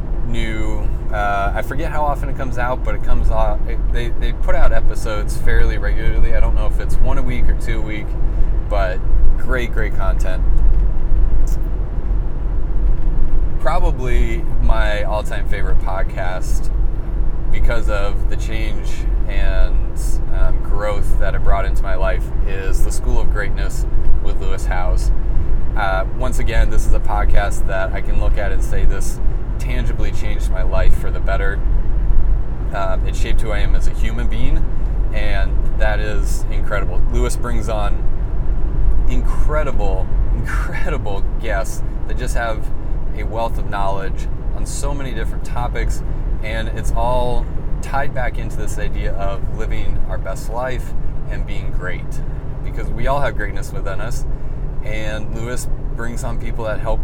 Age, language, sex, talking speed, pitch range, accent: 30-49, English, male, 155 wpm, 95-115 Hz, American